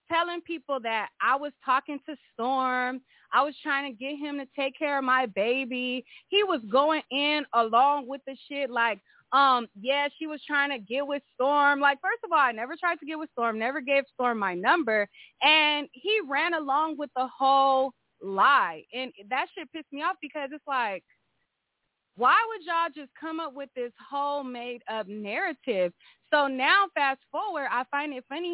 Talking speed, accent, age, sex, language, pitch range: 190 wpm, American, 20-39, female, English, 240-315 Hz